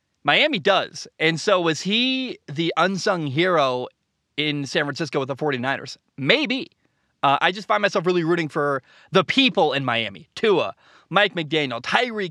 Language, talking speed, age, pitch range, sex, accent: English, 155 wpm, 20-39, 135-180 Hz, male, American